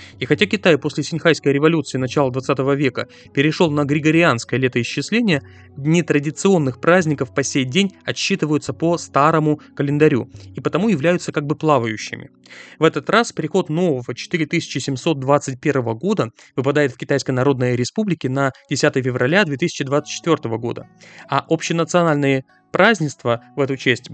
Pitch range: 130-165 Hz